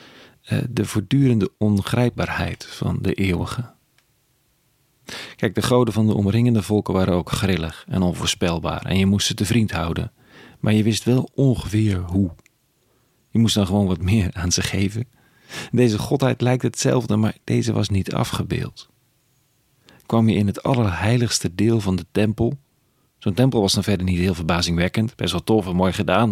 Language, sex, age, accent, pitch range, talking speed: Dutch, male, 40-59, Dutch, 95-125 Hz, 165 wpm